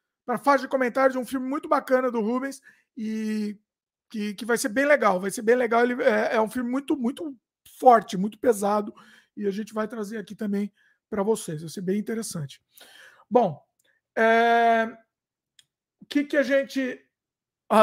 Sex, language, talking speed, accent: male, Portuguese, 175 wpm, Brazilian